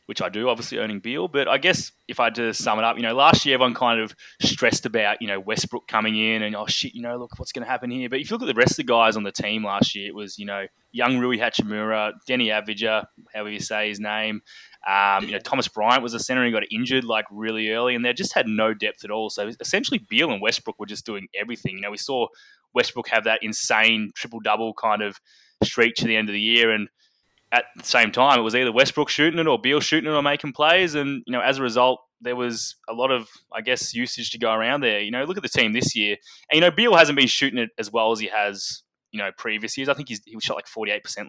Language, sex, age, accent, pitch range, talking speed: English, male, 20-39, Australian, 110-125 Hz, 275 wpm